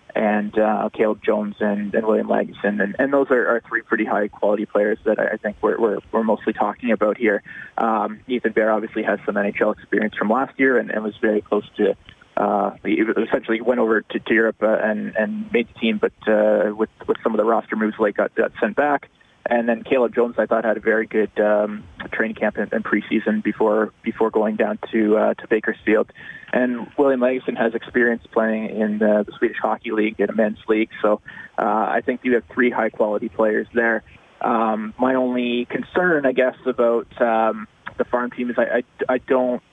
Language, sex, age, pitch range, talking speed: English, male, 20-39, 110-120 Hz, 210 wpm